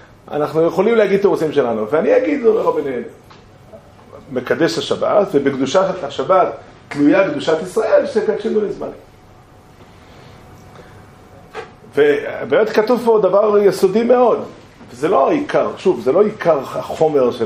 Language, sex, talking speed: Hebrew, male, 115 wpm